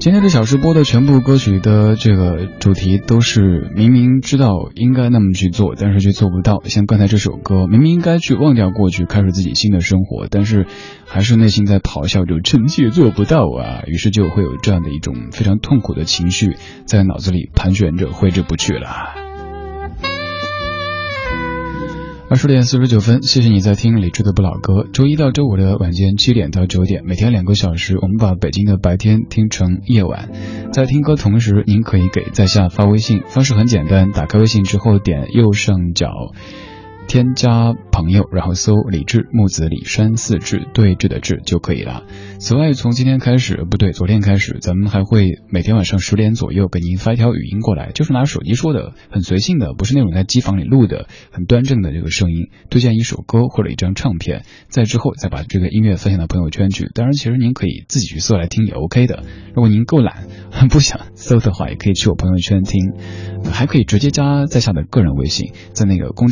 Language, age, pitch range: Chinese, 20-39, 95-120 Hz